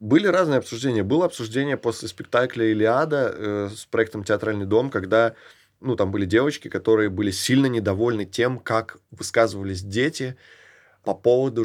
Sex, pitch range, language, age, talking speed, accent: male, 105-125 Hz, Russian, 20-39, 140 wpm, native